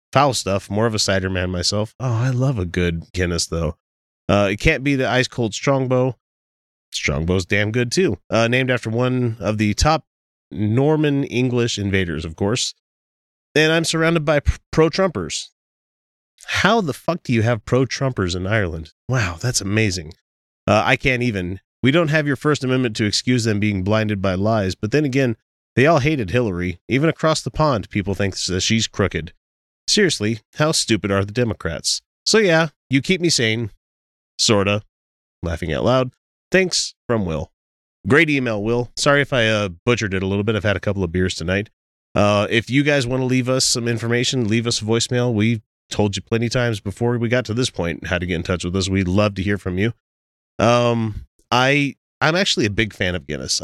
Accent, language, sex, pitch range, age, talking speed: American, English, male, 95-125 Hz, 30-49, 195 wpm